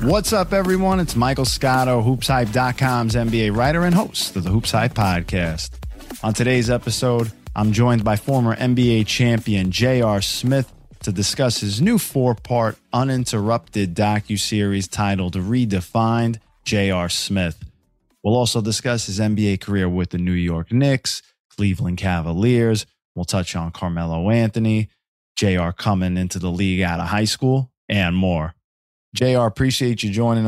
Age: 20-39